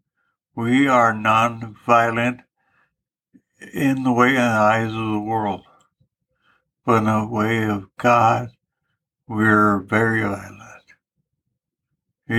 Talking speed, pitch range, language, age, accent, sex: 105 wpm, 110-125 Hz, English, 60-79, American, male